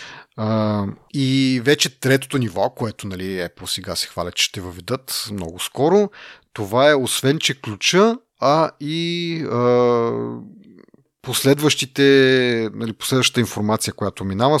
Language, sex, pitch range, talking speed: Bulgarian, male, 100-135 Hz, 125 wpm